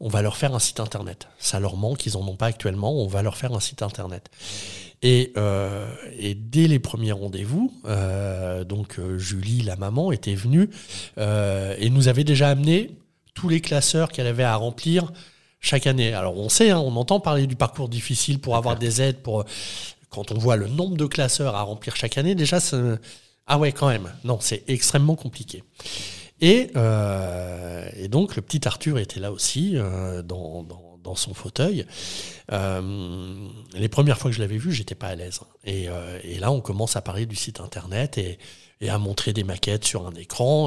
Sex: male